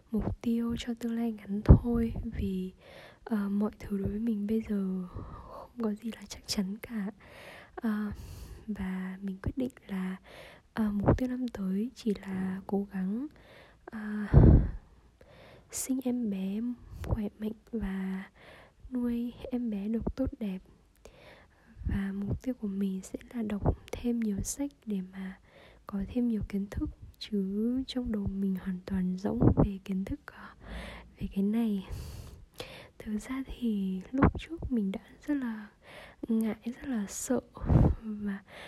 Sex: female